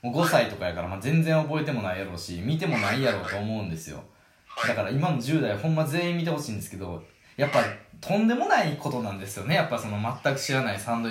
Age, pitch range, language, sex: 20-39, 95-155 Hz, Japanese, male